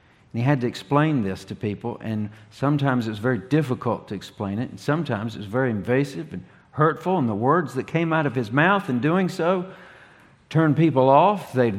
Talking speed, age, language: 200 wpm, 50-69, English